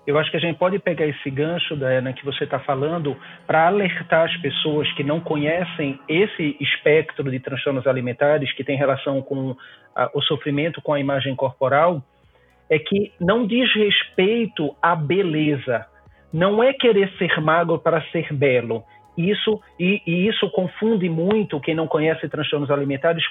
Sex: male